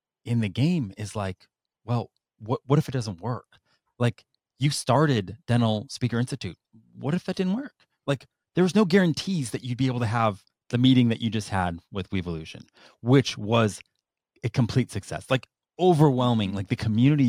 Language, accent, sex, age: English, American, male, 30-49